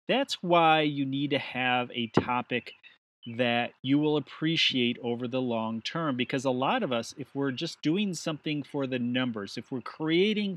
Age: 30-49